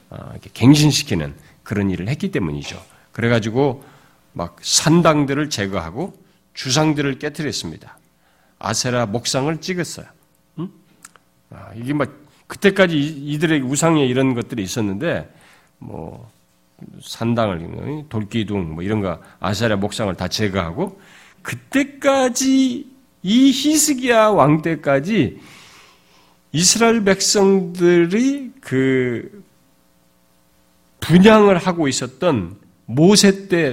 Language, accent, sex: Korean, native, male